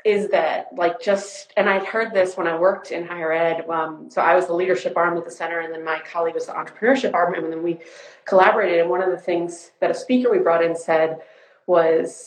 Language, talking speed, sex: English, 240 wpm, female